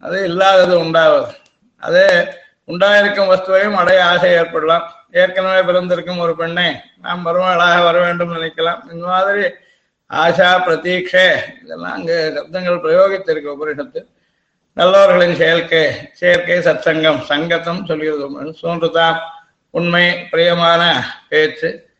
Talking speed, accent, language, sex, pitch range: 105 wpm, native, Tamil, male, 165-195 Hz